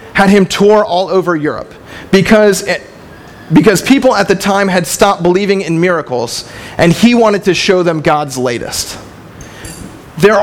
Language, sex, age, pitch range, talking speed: English, male, 40-59, 165-220 Hz, 155 wpm